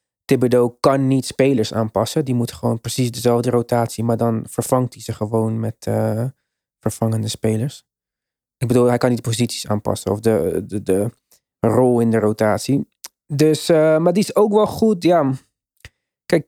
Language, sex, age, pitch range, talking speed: Dutch, male, 20-39, 120-135 Hz, 170 wpm